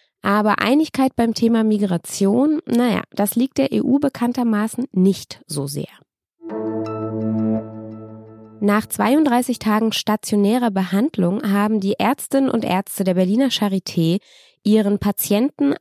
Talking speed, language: 110 wpm, German